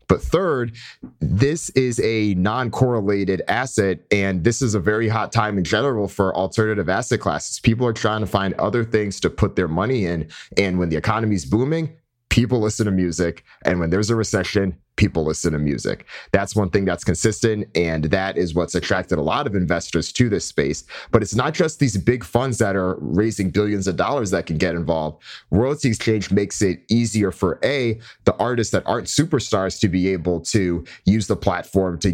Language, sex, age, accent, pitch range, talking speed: English, male, 30-49, American, 90-115 Hz, 195 wpm